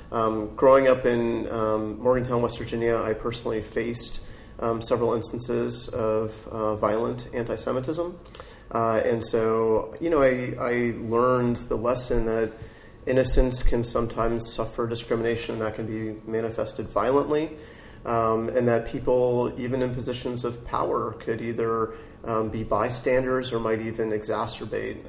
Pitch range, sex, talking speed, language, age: 110-120 Hz, male, 135 wpm, English, 30-49